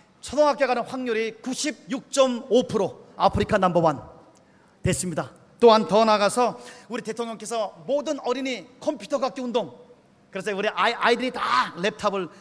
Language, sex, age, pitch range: Korean, male, 40-59, 195-245 Hz